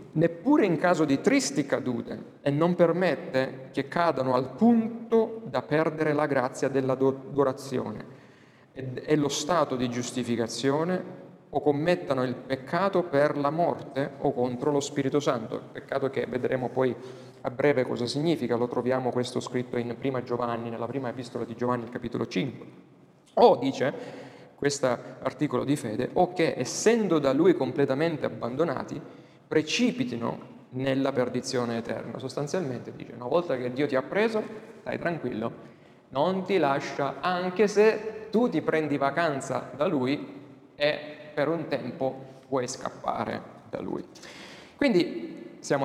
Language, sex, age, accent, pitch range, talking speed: Italian, male, 40-59, native, 130-170 Hz, 140 wpm